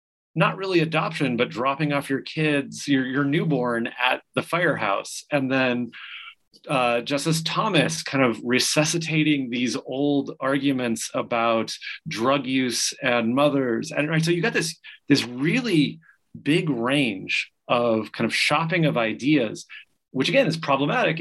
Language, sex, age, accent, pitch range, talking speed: English, male, 30-49, American, 120-150 Hz, 140 wpm